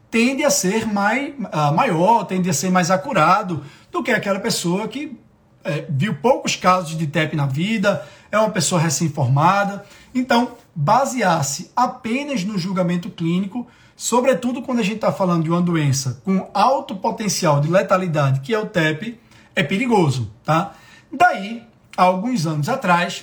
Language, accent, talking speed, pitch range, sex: Portuguese, Brazilian, 150 wpm, 155-230 Hz, male